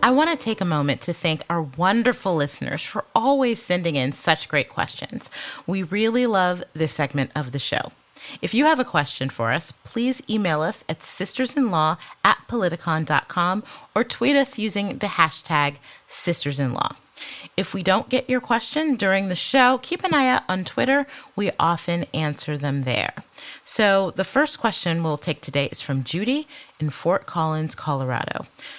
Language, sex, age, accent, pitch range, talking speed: English, female, 30-49, American, 145-200 Hz, 165 wpm